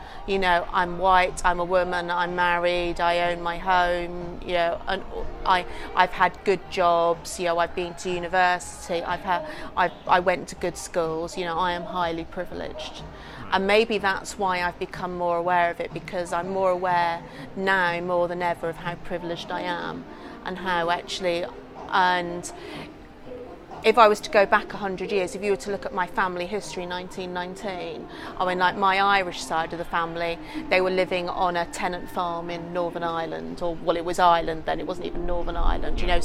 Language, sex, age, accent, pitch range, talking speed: English, female, 30-49, British, 170-185 Hz, 195 wpm